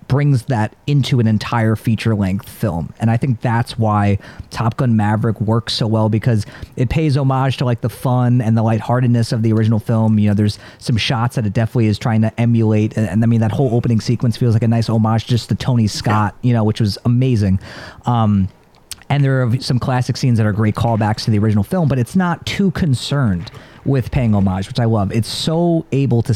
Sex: male